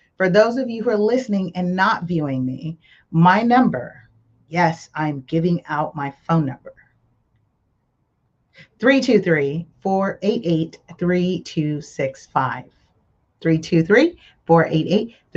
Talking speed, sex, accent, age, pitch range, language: 85 wpm, female, American, 30-49, 160-195 Hz, English